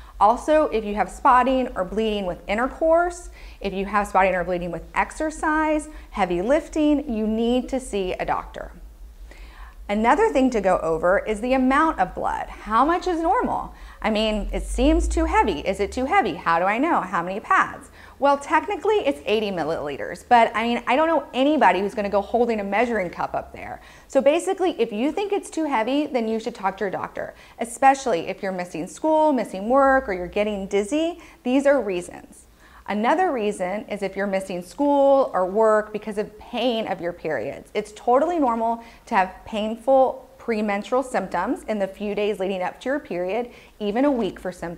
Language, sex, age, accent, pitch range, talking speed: English, female, 40-59, American, 200-280 Hz, 190 wpm